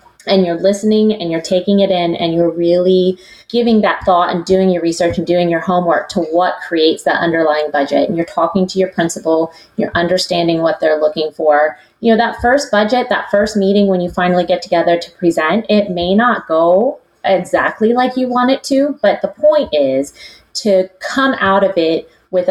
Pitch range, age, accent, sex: 165-210 Hz, 30-49, American, female